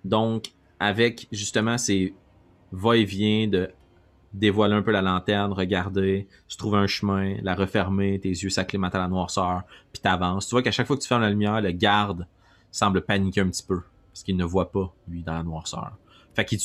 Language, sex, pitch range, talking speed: French, male, 90-110 Hz, 205 wpm